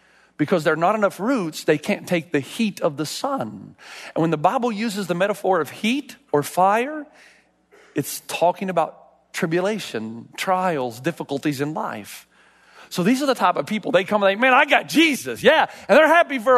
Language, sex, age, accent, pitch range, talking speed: English, male, 40-59, American, 165-270 Hz, 190 wpm